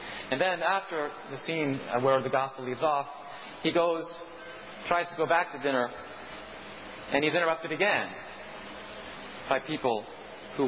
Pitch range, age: 115-160 Hz, 40-59